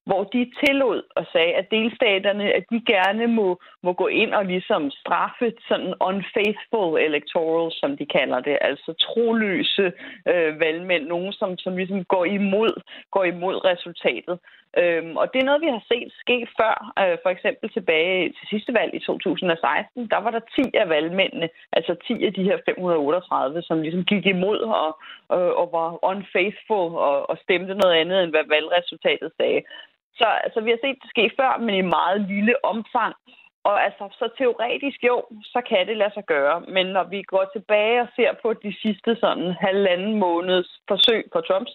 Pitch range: 180-235 Hz